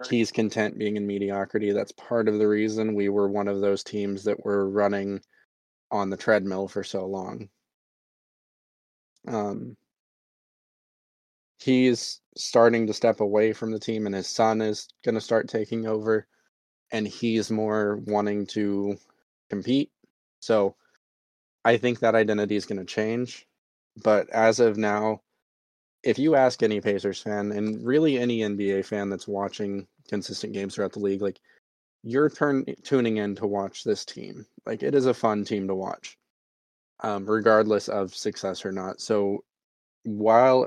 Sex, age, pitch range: male, 20-39, 100-110 Hz